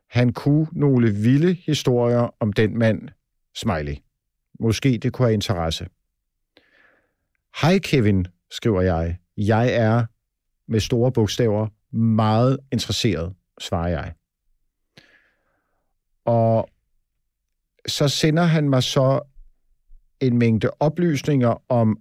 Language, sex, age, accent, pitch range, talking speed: Danish, male, 50-69, native, 110-140 Hz, 100 wpm